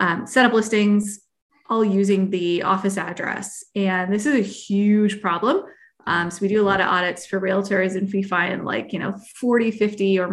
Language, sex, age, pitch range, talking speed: English, female, 20-39, 190-235 Hz, 200 wpm